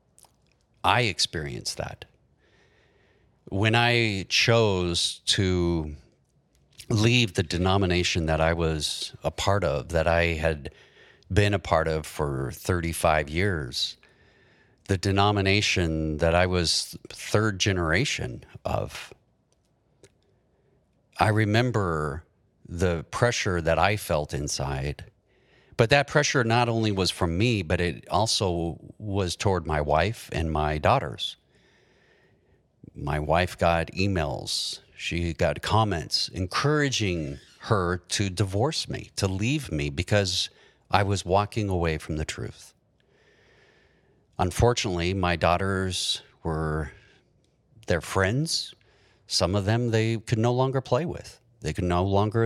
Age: 50-69